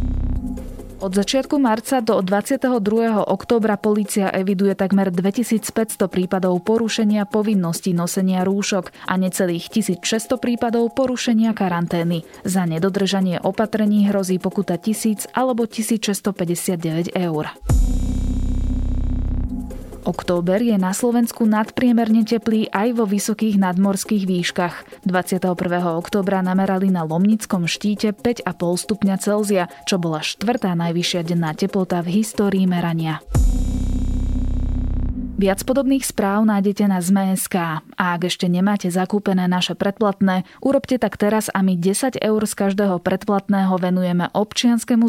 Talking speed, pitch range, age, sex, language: 110 wpm, 175-215 Hz, 20-39, female, Slovak